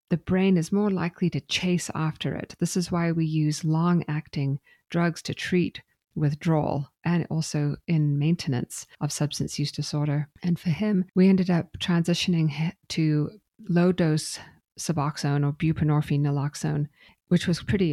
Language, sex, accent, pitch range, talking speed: English, female, American, 150-180 Hz, 145 wpm